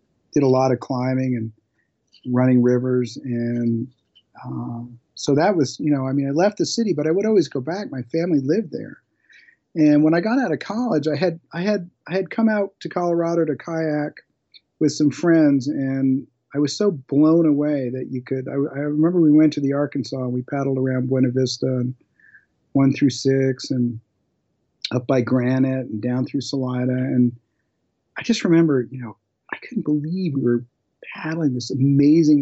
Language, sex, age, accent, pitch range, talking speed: English, male, 40-59, American, 125-155 Hz, 190 wpm